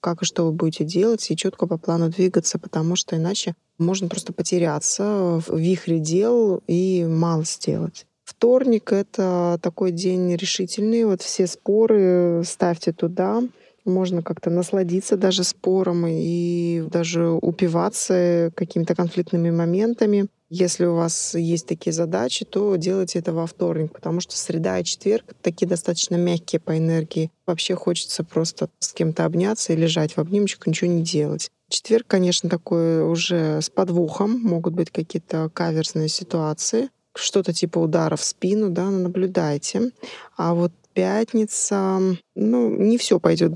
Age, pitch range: 20-39, 170-190 Hz